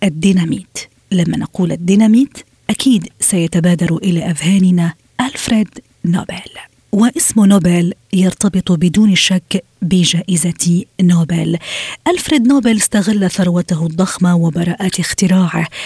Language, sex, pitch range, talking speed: Arabic, female, 175-215 Hz, 90 wpm